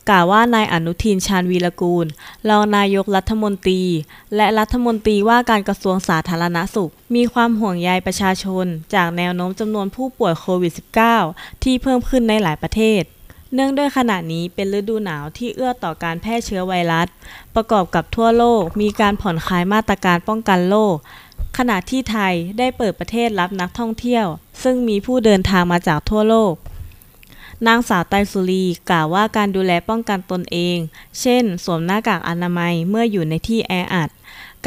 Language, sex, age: Thai, female, 20-39